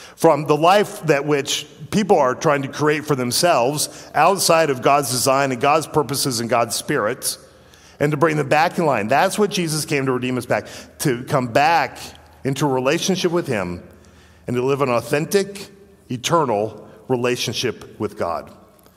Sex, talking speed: male, 170 wpm